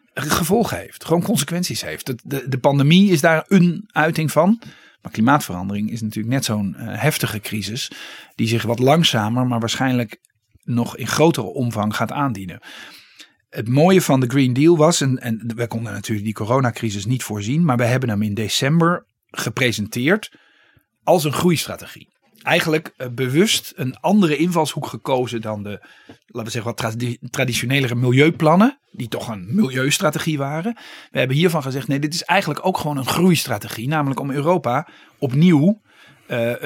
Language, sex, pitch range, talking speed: Dutch, male, 120-160 Hz, 160 wpm